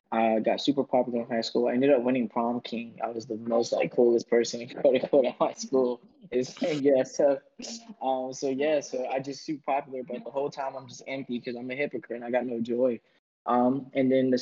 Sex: male